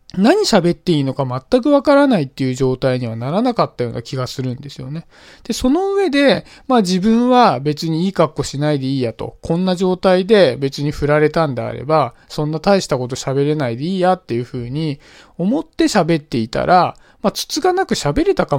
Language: Japanese